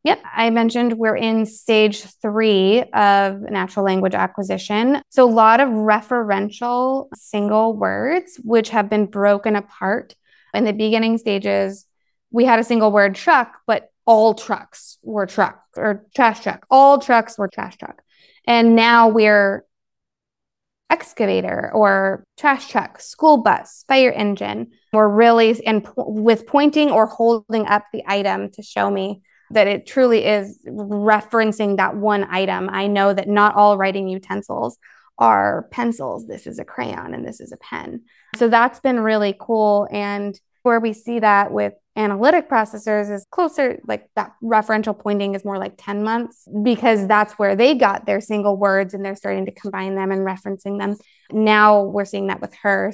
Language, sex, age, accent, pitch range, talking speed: English, female, 20-39, American, 200-230 Hz, 160 wpm